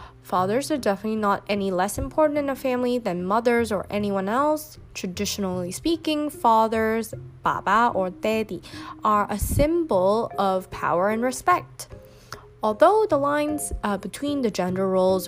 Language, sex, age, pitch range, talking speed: English, female, 20-39, 190-265 Hz, 140 wpm